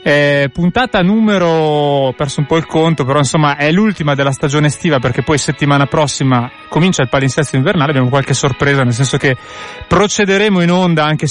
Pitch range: 130-160 Hz